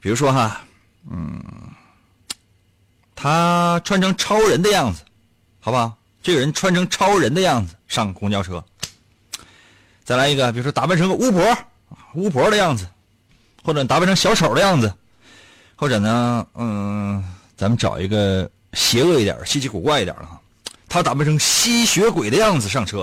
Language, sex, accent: Chinese, male, native